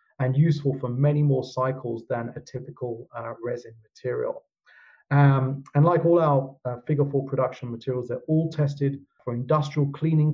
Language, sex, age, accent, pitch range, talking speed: English, male, 40-59, British, 130-150 Hz, 165 wpm